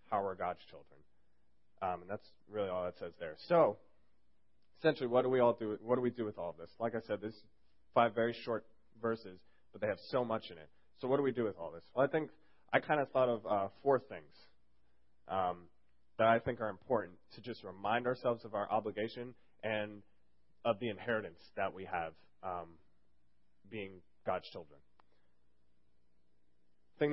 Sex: male